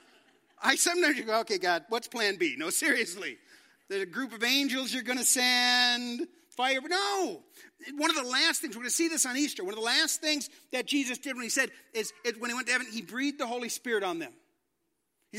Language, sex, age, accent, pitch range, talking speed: English, male, 40-59, American, 245-310 Hz, 235 wpm